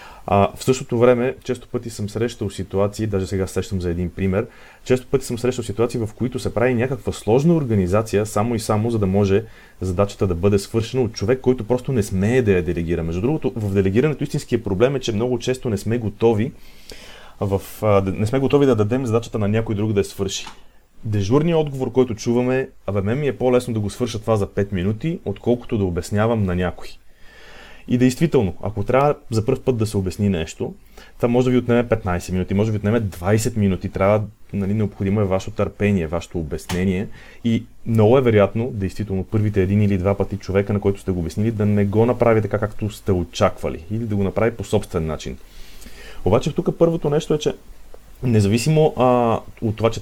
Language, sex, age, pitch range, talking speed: Bulgarian, male, 30-49, 100-120 Hz, 200 wpm